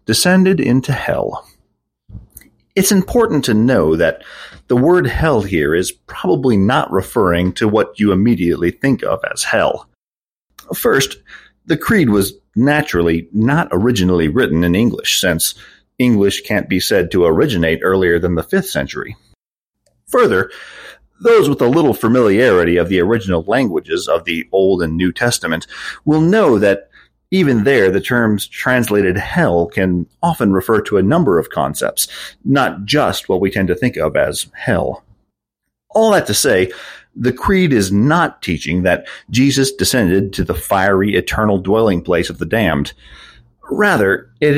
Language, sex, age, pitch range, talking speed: English, male, 40-59, 95-135 Hz, 150 wpm